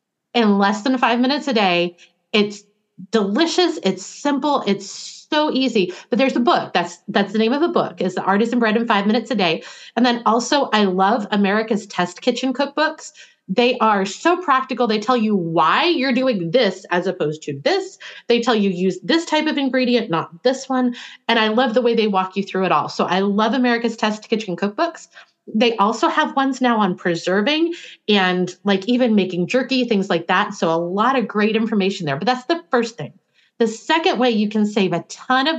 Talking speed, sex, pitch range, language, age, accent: 205 wpm, female, 190-255 Hz, English, 30-49, American